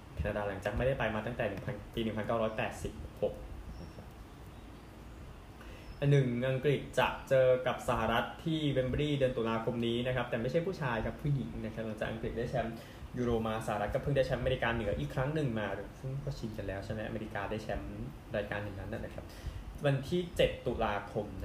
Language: Thai